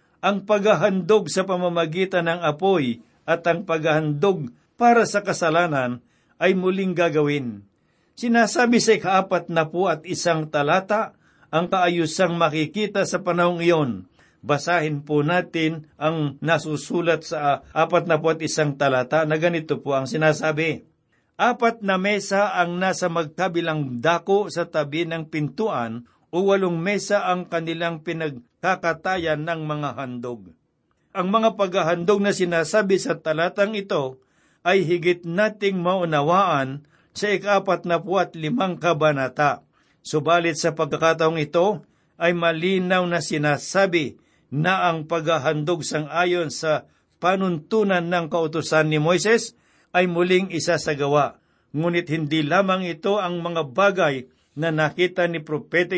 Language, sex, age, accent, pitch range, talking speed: Filipino, male, 60-79, native, 155-185 Hz, 125 wpm